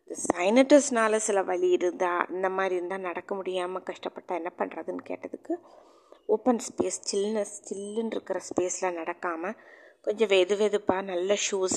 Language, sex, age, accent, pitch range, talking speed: Tamil, female, 20-39, native, 185-235 Hz, 125 wpm